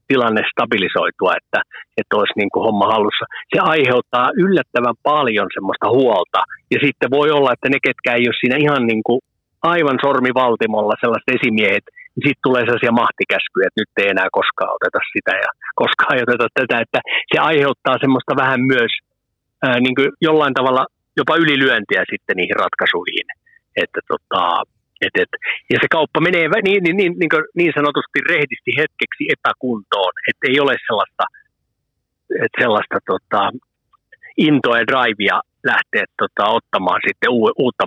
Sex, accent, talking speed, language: male, native, 150 wpm, Finnish